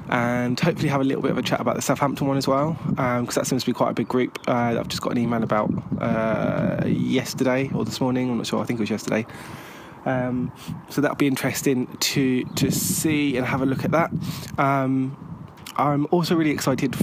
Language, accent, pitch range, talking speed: English, British, 125-145 Hz, 225 wpm